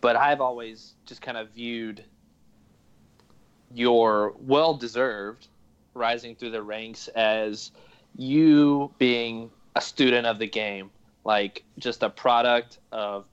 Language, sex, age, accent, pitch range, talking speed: English, male, 20-39, American, 105-120 Hz, 115 wpm